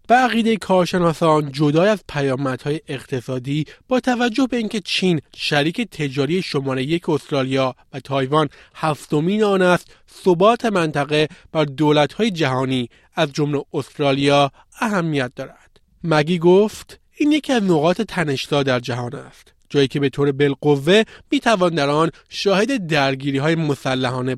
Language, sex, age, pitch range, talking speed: Persian, male, 30-49, 140-185 Hz, 130 wpm